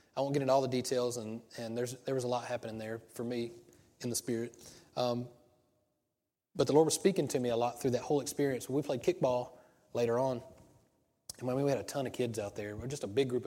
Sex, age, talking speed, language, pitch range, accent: male, 30-49, 245 wpm, English, 120-150 Hz, American